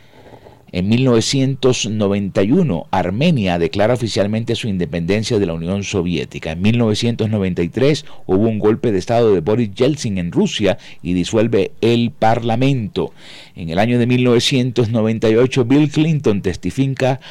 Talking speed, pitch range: 120 wpm, 90-125 Hz